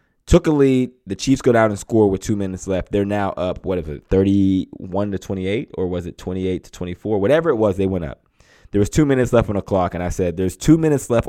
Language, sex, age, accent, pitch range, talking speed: English, male, 20-39, American, 100-130 Hz, 260 wpm